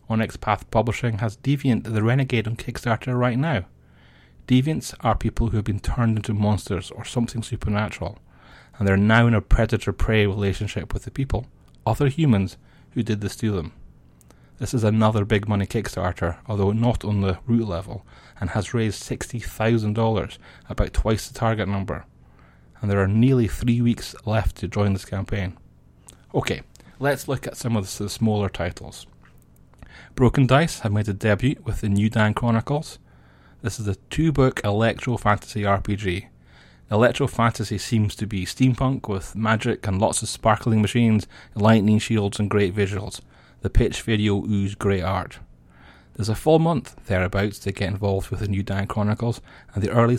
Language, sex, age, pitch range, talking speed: English, male, 30-49, 95-115 Hz, 165 wpm